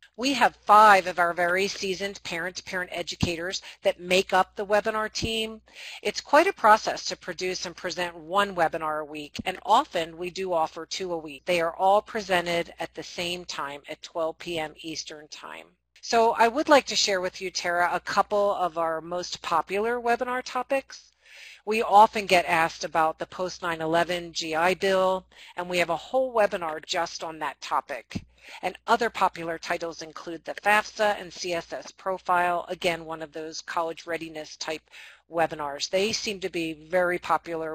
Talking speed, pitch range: 170 wpm, 165-195 Hz